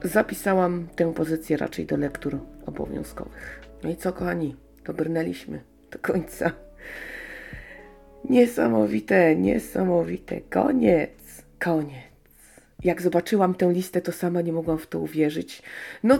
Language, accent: Polish, native